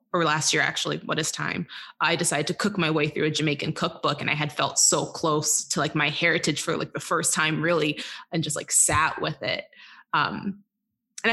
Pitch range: 155-195 Hz